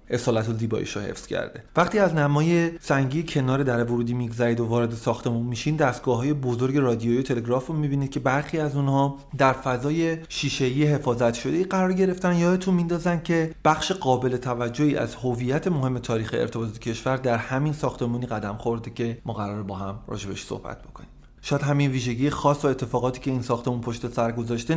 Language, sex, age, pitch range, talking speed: Persian, male, 30-49, 115-140 Hz, 175 wpm